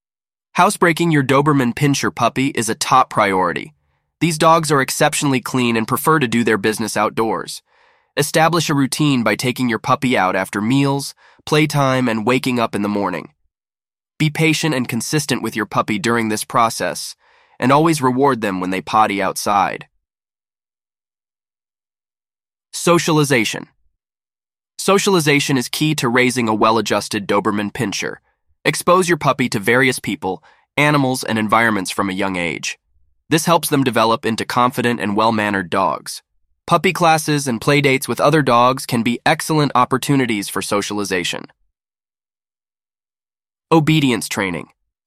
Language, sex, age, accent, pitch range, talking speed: English, male, 20-39, American, 110-150 Hz, 135 wpm